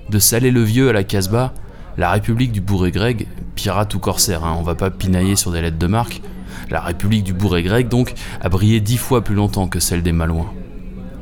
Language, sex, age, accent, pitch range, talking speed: French, male, 20-39, French, 90-100 Hz, 220 wpm